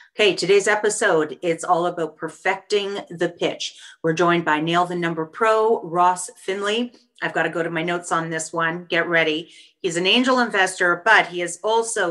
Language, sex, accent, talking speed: English, female, American, 190 wpm